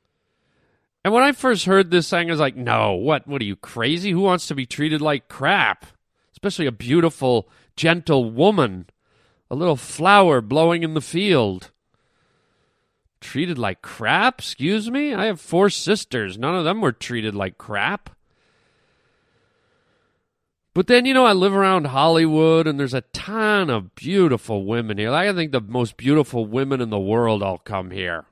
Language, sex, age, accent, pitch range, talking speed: English, male, 40-59, American, 115-175 Hz, 165 wpm